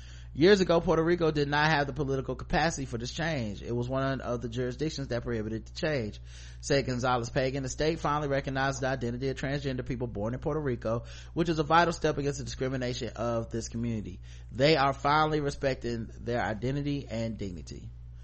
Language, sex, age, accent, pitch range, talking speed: English, male, 30-49, American, 115-150 Hz, 190 wpm